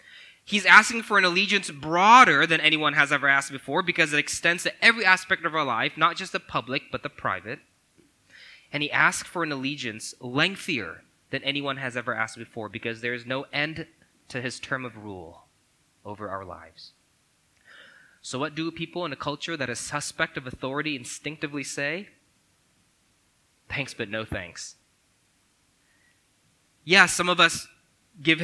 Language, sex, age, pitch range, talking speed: English, male, 20-39, 125-165 Hz, 160 wpm